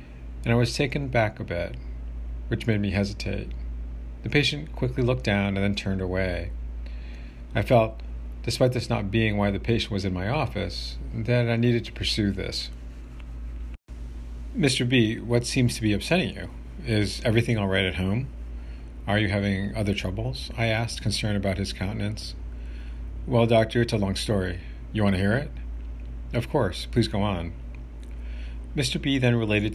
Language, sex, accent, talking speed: English, male, American, 170 wpm